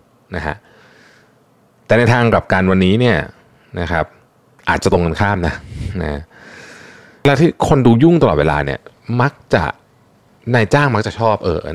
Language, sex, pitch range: Thai, male, 85-115 Hz